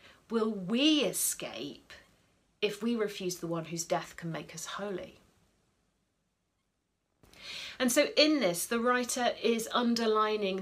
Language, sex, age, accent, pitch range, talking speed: English, female, 40-59, British, 180-255 Hz, 125 wpm